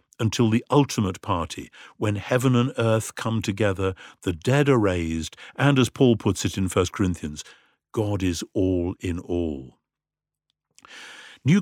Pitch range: 100-140 Hz